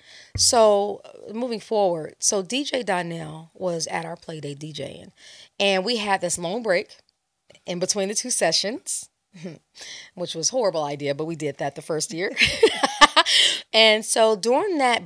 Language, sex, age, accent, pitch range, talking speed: English, female, 30-49, American, 170-225 Hz, 150 wpm